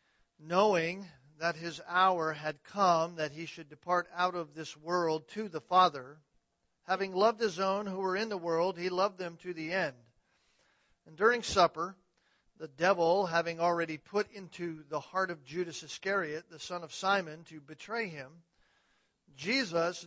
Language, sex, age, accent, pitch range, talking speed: English, male, 50-69, American, 155-185 Hz, 160 wpm